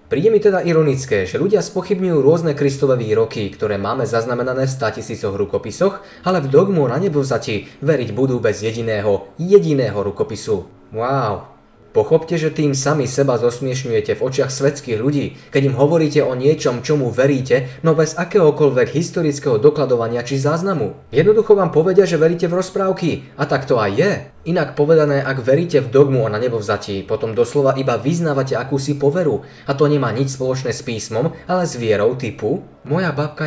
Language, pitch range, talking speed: Slovak, 125-160 Hz, 165 wpm